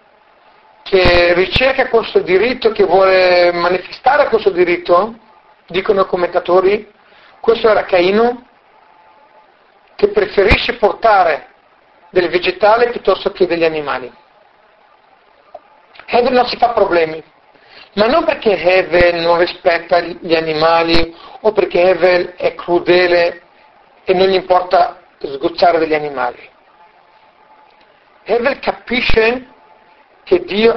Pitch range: 180-235 Hz